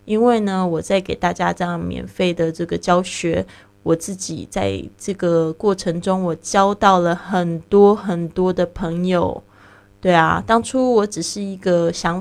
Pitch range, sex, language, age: 165-185 Hz, female, Chinese, 20-39